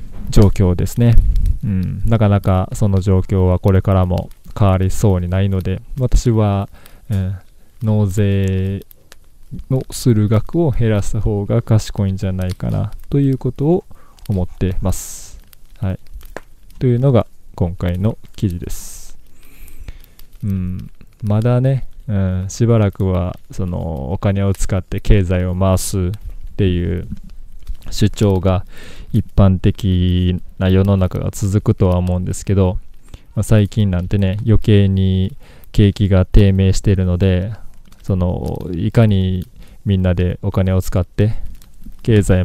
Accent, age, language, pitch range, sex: native, 20-39, Japanese, 90-105 Hz, male